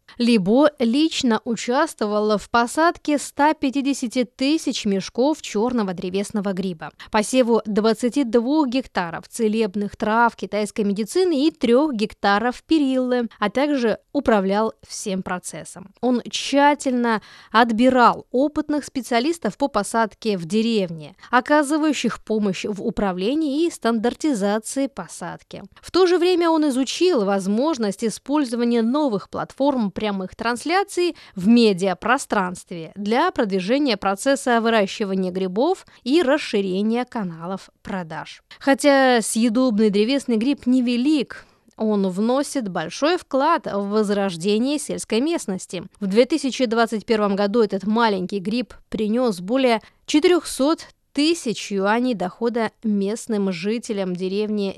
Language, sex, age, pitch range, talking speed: Russian, female, 20-39, 205-275 Hz, 105 wpm